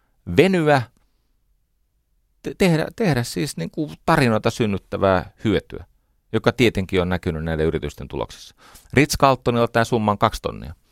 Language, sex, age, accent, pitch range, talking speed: Finnish, male, 40-59, native, 80-115 Hz, 120 wpm